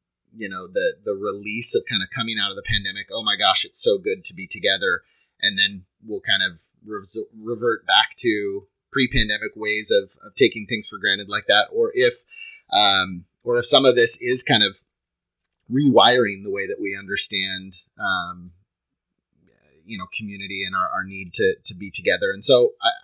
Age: 30-49